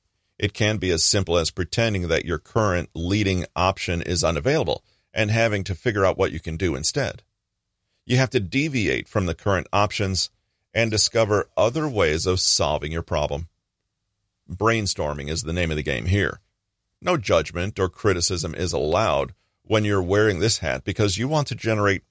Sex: male